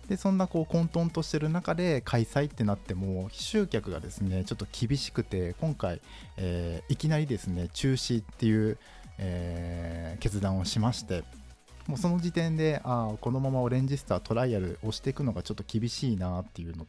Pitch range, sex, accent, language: 95-140 Hz, male, native, Japanese